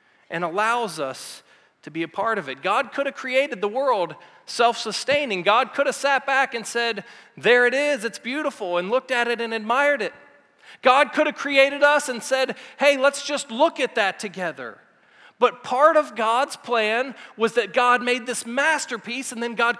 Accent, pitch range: American, 210-270 Hz